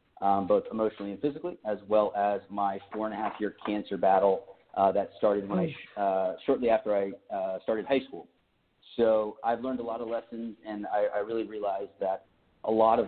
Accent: American